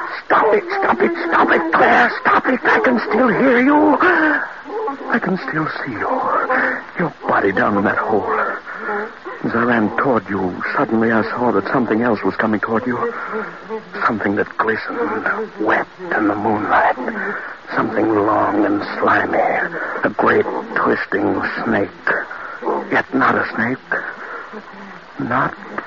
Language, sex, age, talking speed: English, male, 60-79, 135 wpm